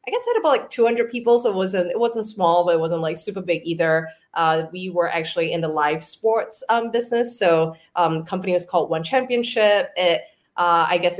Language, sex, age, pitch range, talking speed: English, female, 20-39, 165-205 Hz, 235 wpm